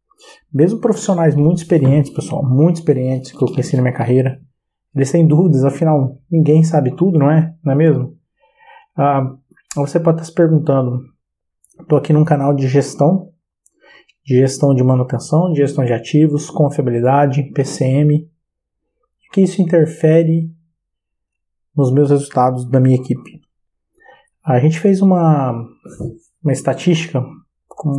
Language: Portuguese